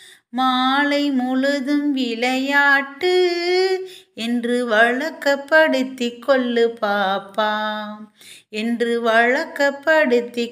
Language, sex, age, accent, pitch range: Tamil, female, 20-39, native, 210-285 Hz